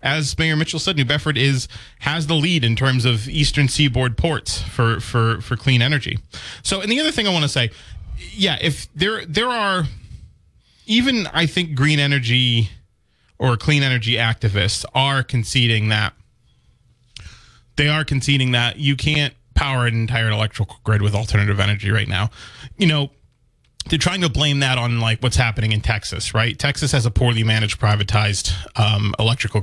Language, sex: English, male